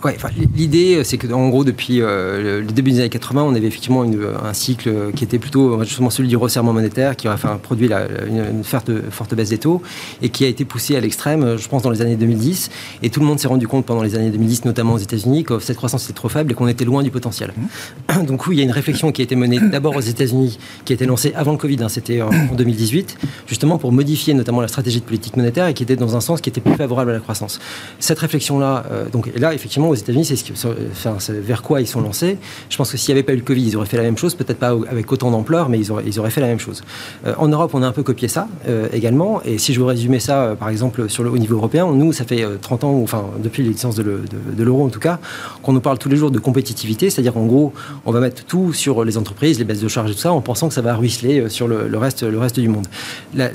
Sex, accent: male, French